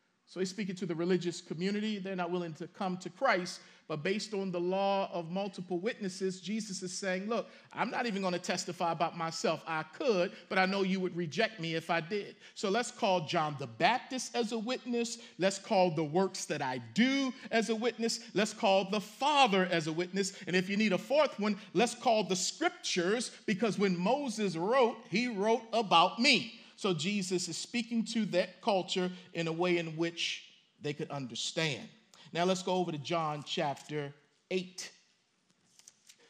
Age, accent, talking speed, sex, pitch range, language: 50-69, American, 190 wpm, male, 170-210 Hz, English